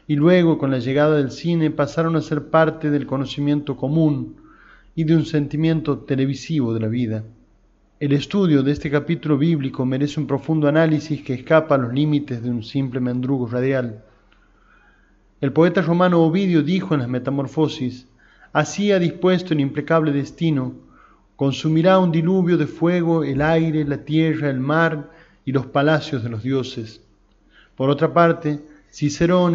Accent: Argentinian